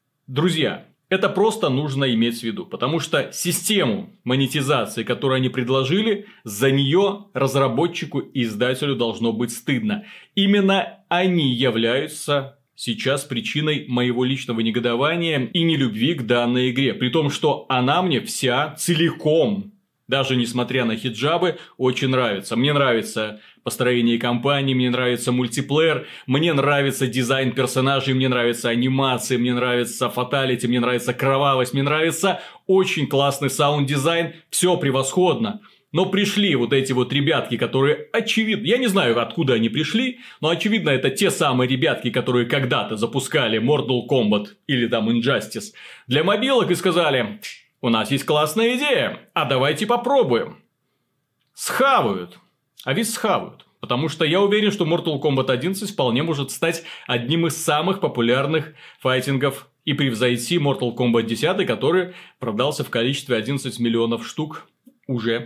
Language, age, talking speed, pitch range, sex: Russian, 30-49, 135 wpm, 125-170 Hz, male